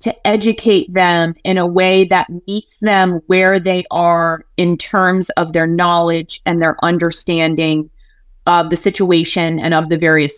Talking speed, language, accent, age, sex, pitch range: 155 wpm, English, American, 30-49, female, 170-205 Hz